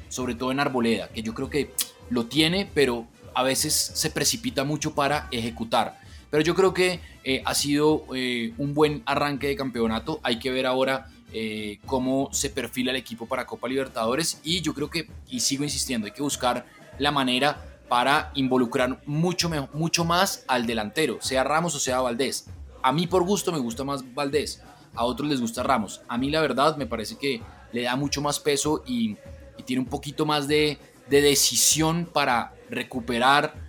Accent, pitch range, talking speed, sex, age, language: Colombian, 120-150 Hz, 185 wpm, male, 20-39, Spanish